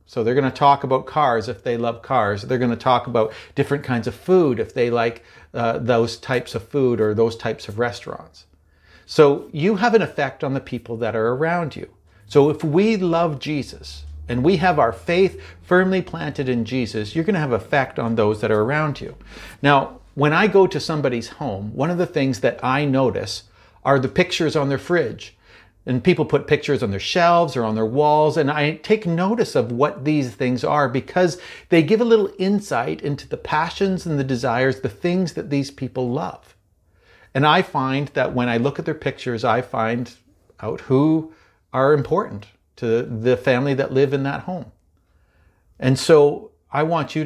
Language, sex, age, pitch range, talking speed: English, male, 50-69, 115-155 Hz, 200 wpm